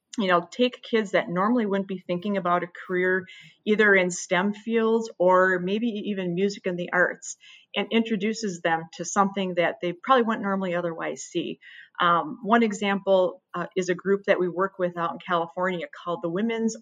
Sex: female